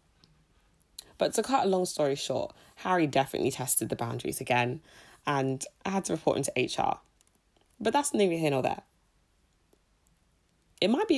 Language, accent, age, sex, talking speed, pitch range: English, British, 20-39, female, 160 wpm, 130-165 Hz